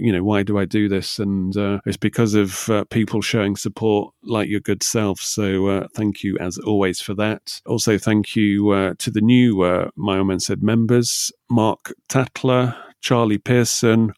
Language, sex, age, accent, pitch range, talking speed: English, male, 30-49, British, 95-115 Hz, 185 wpm